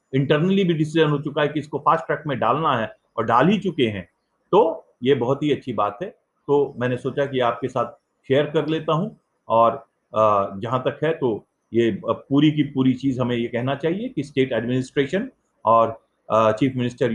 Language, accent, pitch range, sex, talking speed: English, Indian, 110-145 Hz, male, 195 wpm